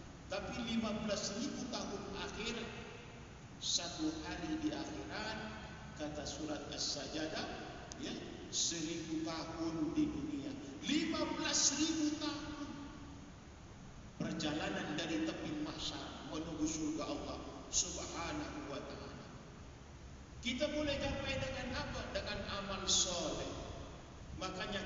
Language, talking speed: Malay, 90 wpm